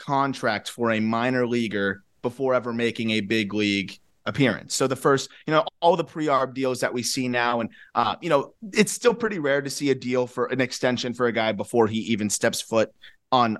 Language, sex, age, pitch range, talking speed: English, male, 30-49, 105-130 Hz, 215 wpm